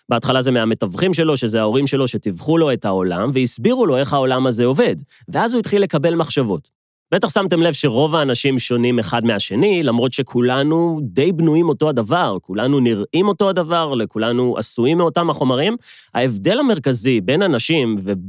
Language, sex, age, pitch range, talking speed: Hebrew, male, 30-49, 110-145 Hz, 135 wpm